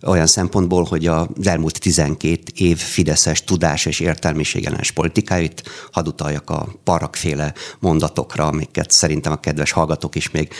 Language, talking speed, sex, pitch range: Hungarian, 130 wpm, male, 80-95 Hz